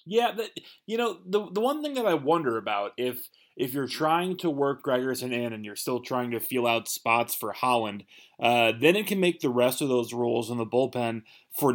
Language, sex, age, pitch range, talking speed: English, male, 20-39, 115-145 Hz, 225 wpm